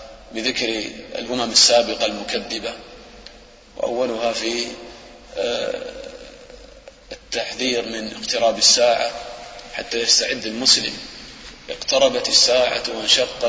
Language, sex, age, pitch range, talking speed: English, male, 30-49, 110-115 Hz, 70 wpm